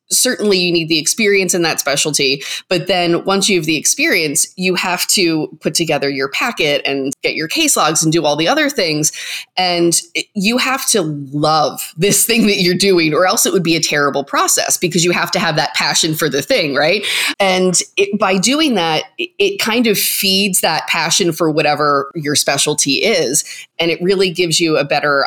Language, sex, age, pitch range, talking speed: English, female, 20-39, 155-200 Hz, 200 wpm